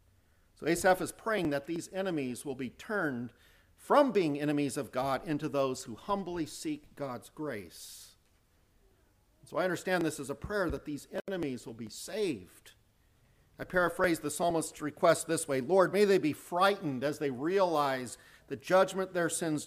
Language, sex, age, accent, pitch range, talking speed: English, male, 50-69, American, 115-150 Hz, 165 wpm